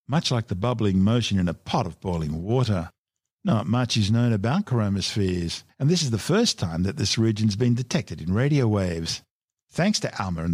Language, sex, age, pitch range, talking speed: English, male, 50-69, 100-135 Hz, 200 wpm